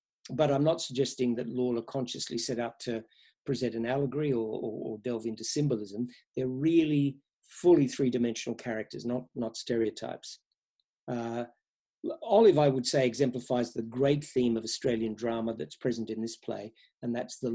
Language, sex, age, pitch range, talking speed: English, male, 50-69, 115-130 Hz, 160 wpm